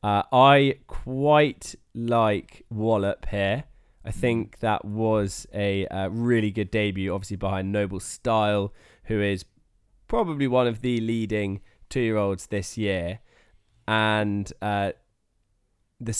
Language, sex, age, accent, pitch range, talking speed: English, male, 20-39, British, 100-115 Hz, 120 wpm